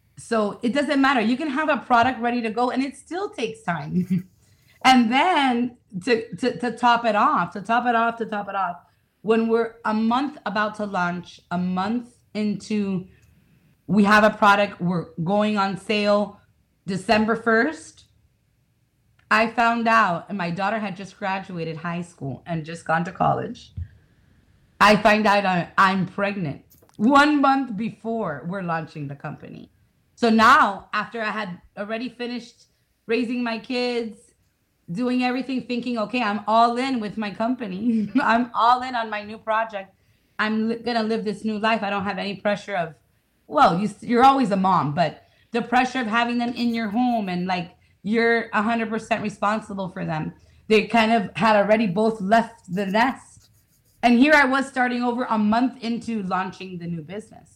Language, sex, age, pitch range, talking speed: English, female, 30-49, 190-235 Hz, 175 wpm